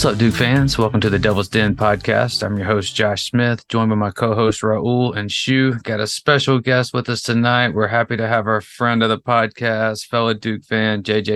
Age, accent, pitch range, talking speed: 30-49, American, 100-120 Hz, 220 wpm